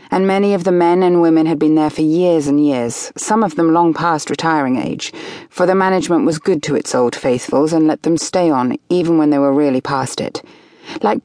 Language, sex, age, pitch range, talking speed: English, female, 30-49, 145-180 Hz, 230 wpm